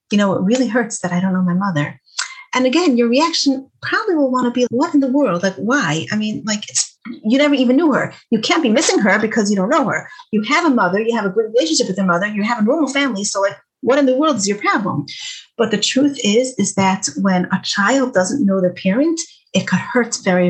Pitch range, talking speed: 190-270 Hz, 255 wpm